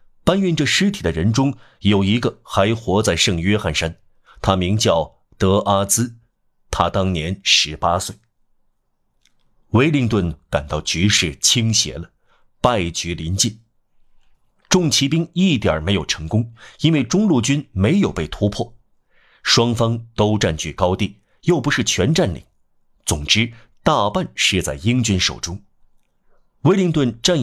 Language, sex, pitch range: Chinese, male, 95-120 Hz